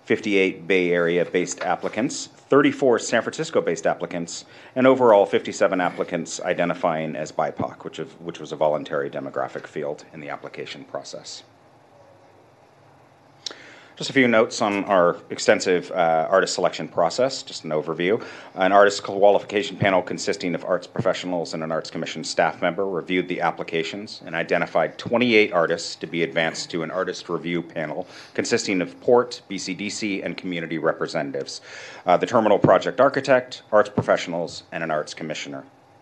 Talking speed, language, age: 145 wpm, English, 40-59